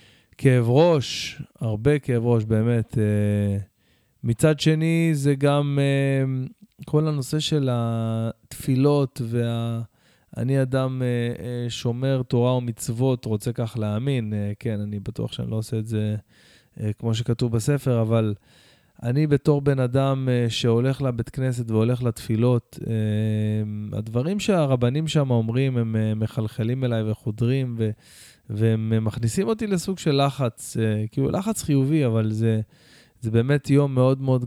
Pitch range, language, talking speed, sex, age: 115-140 Hz, Hebrew, 125 wpm, male, 20-39